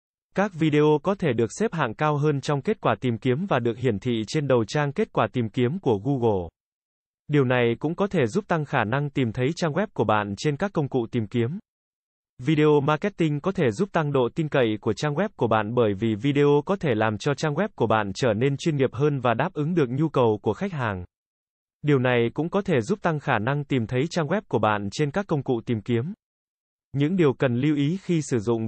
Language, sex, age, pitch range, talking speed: Vietnamese, male, 20-39, 120-160 Hz, 245 wpm